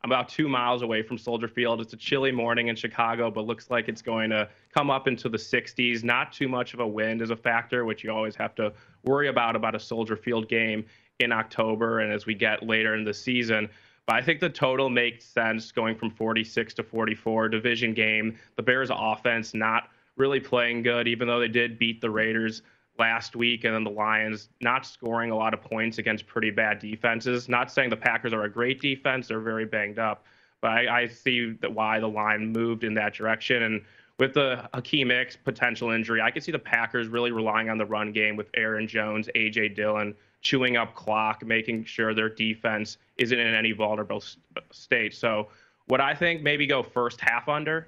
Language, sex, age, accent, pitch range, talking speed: English, male, 20-39, American, 110-120 Hz, 210 wpm